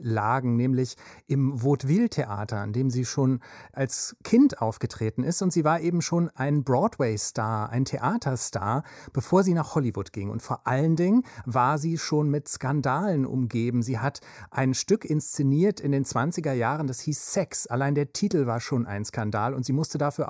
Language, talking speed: German, 175 wpm